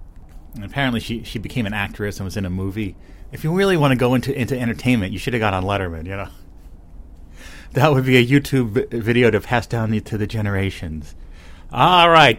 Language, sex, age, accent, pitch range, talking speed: English, male, 30-49, American, 90-130 Hz, 210 wpm